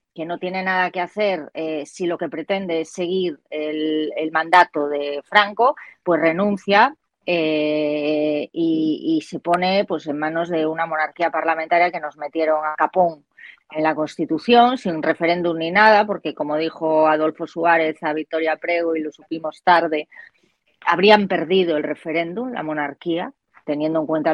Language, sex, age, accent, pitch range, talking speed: Spanish, female, 20-39, Spanish, 160-225 Hz, 160 wpm